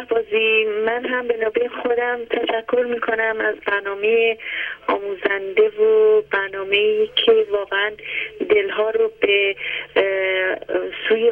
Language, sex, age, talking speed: Persian, female, 30-49, 100 wpm